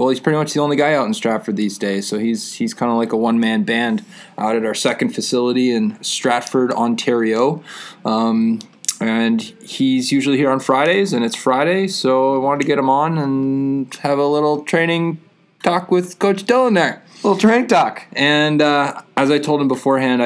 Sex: male